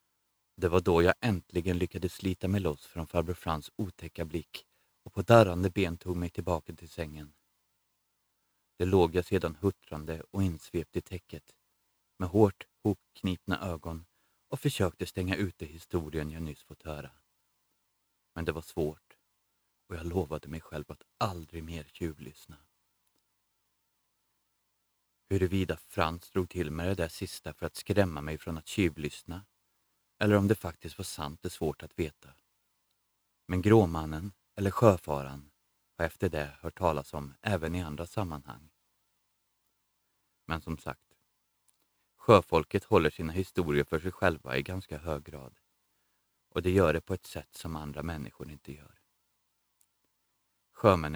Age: 30-49